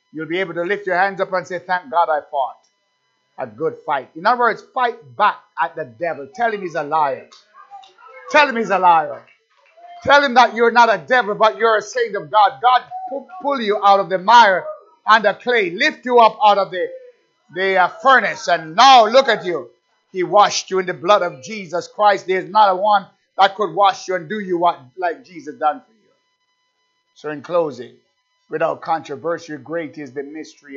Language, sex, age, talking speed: English, male, 50-69, 210 wpm